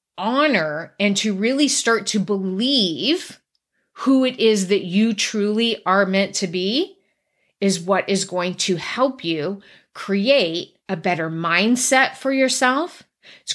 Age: 30-49